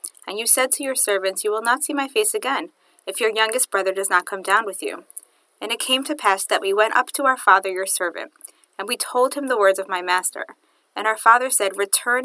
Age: 30-49